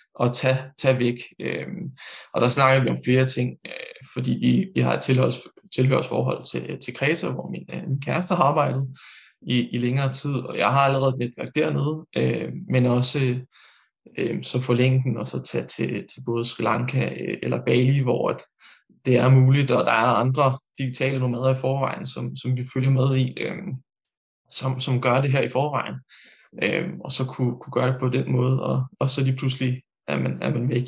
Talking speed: 200 wpm